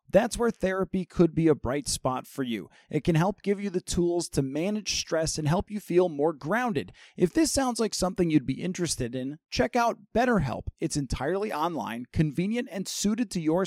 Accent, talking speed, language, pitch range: American, 200 wpm, English, 155-205 Hz